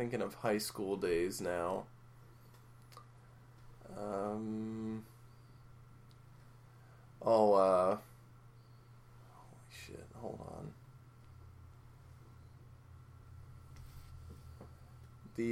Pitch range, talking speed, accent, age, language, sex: 110-125 Hz, 55 wpm, American, 20-39, English, male